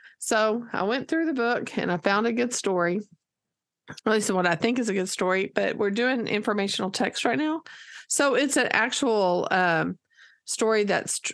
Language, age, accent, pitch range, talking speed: English, 40-59, American, 170-215 Hz, 185 wpm